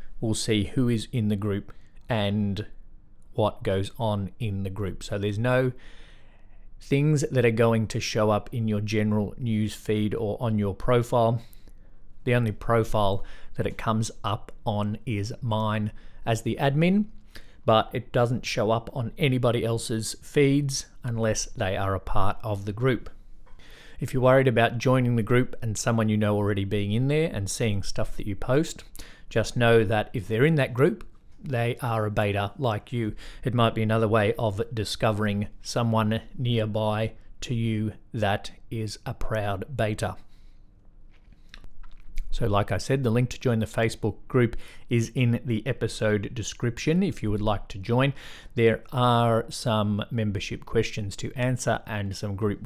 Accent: Australian